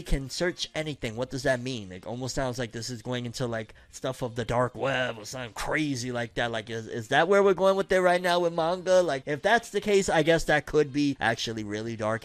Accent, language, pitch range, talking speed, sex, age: American, English, 115-170 Hz, 255 wpm, male, 20-39